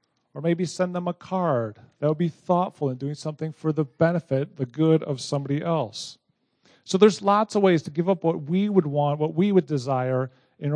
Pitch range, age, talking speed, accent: 140-175 Hz, 40-59, 210 wpm, American